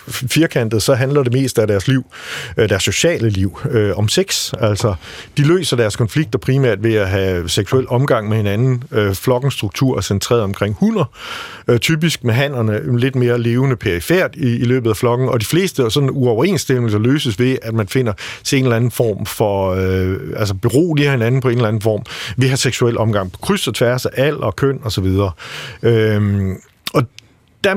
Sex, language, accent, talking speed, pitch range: male, Danish, native, 190 wpm, 105-135 Hz